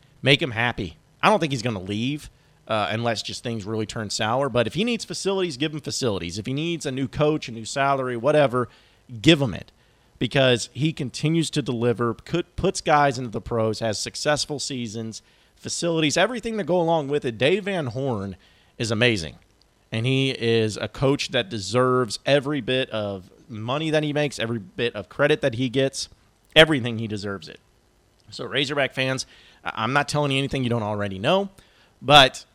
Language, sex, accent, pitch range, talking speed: English, male, American, 110-145 Hz, 190 wpm